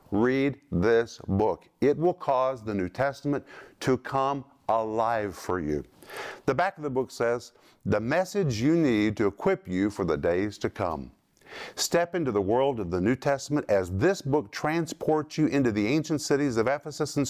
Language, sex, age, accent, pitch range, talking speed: English, male, 50-69, American, 105-145 Hz, 180 wpm